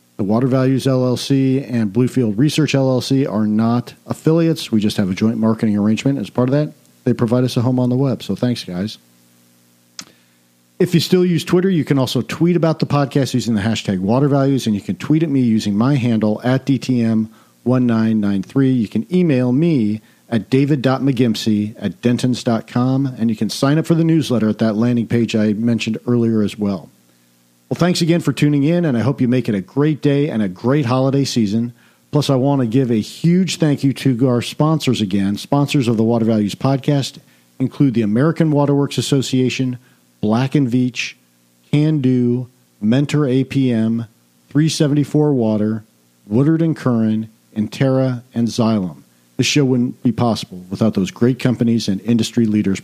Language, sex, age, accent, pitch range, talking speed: English, male, 50-69, American, 110-140 Hz, 175 wpm